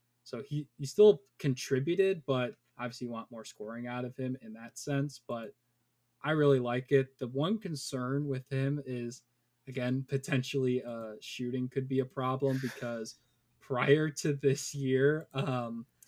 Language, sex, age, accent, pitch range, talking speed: English, male, 20-39, American, 115-135 Hz, 155 wpm